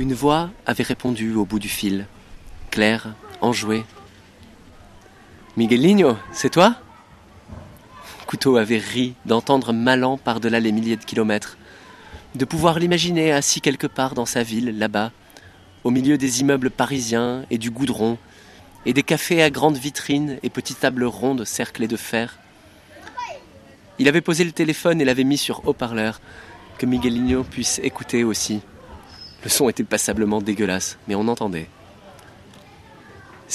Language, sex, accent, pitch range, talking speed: French, male, French, 110-145 Hz, 140 wpm